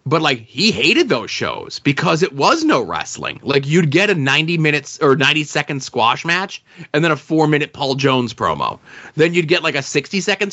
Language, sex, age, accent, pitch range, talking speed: English, male, 30-49, American, 135-180 Hz, 195 wpm